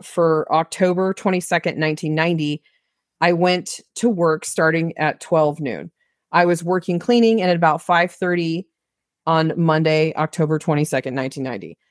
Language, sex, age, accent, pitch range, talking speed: English, female, 30-49, American, 160-190 Hz, 130 wpm